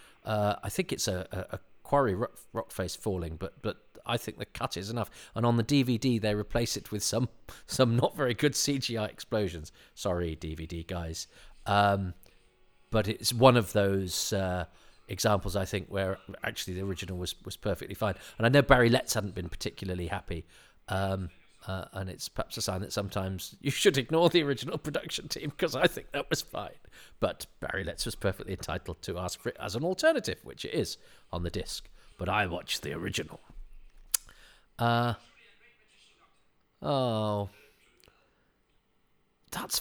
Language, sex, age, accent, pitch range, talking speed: English, male, 40-59, British, 95-125 Hz, 170 wpm